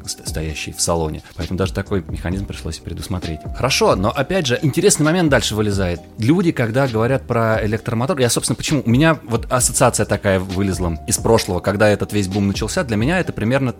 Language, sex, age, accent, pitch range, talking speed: Russian, male, 20-39, native, 90-115 Hz, 185 wpm